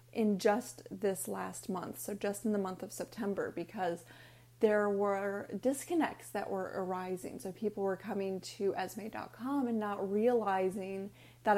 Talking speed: 150 wpm